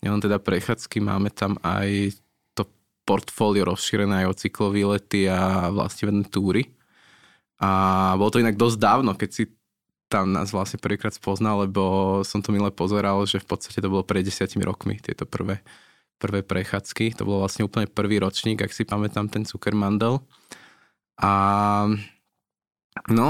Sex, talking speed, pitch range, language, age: male, 150 wpm, 100-110 Hz, Slovak, 20-39